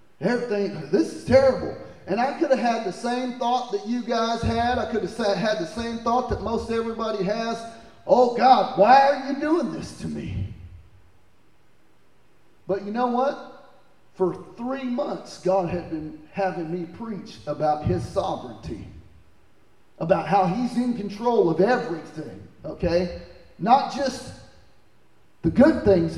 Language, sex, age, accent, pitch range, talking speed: English, male, 40-59, American, 190-250 Hz, 150 wpm